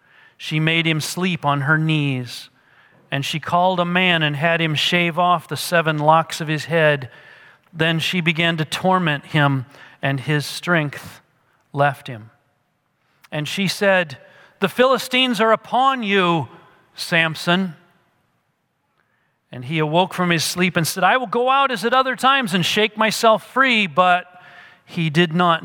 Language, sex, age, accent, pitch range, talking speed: English, male, 40-59, American, 145-185 Hz, 155 wpm